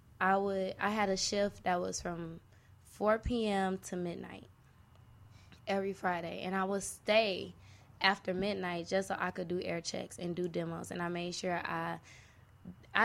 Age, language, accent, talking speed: 20-39, English, American, 165 wpm